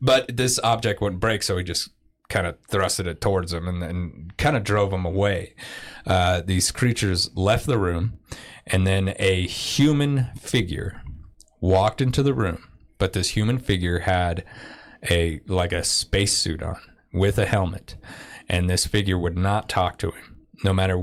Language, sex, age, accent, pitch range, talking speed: English, male, 30-49, American, 90-105 Hz, 170 wpm